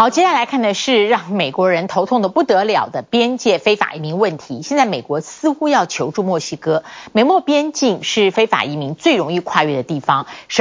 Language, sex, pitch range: Chinese, female, 170-250 Hz